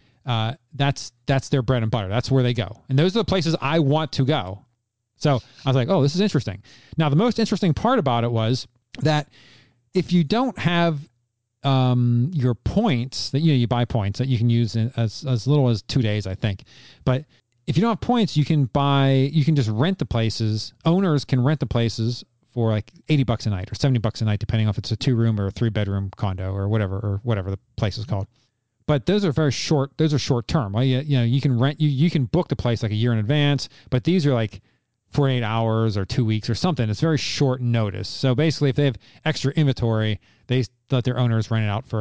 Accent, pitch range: American, 115-145 Hz